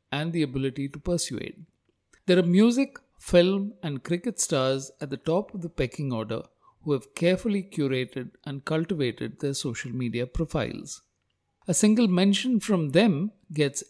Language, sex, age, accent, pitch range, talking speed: English, male, 60-79, Indian, 135-185 Hz, 150 wpm